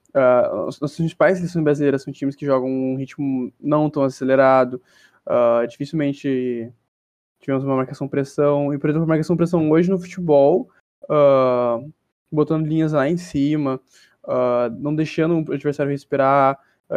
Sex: male